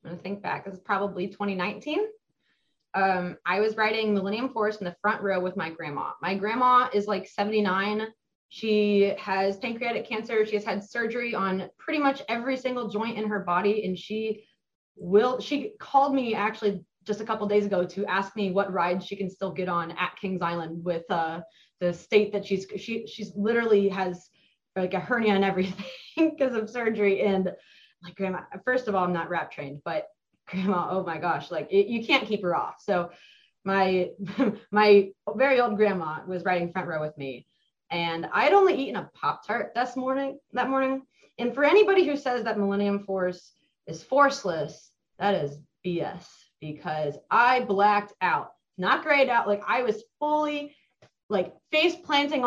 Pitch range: 185-235 Hz